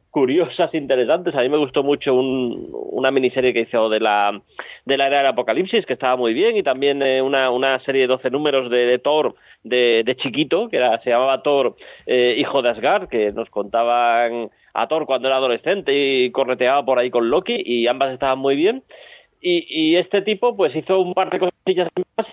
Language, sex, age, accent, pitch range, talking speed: Spanish, male, 30-49, Spanish, 120-160 Hz, 205 wpm